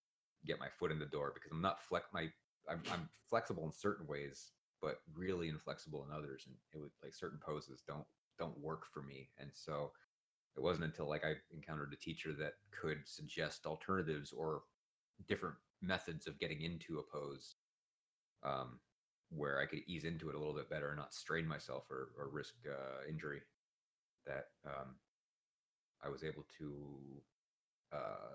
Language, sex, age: English, male, 30-49